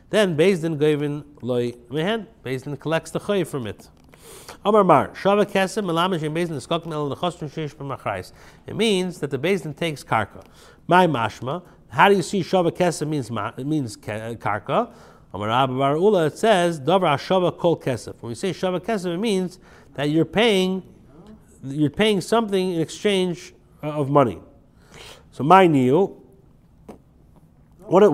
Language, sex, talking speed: English, male, 145 wpm